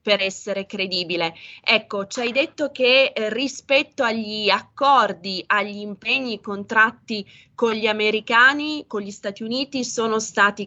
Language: Italian